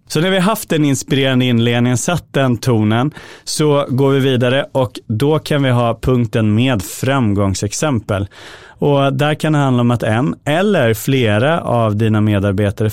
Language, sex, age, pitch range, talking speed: Swedish, male, 30-49, 105-140 Hz, 165 wpm